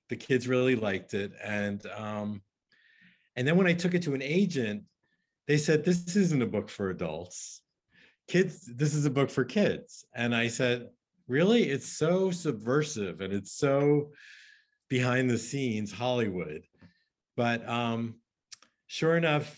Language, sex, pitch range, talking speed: English, male, 110-145 Hz, 150 wpm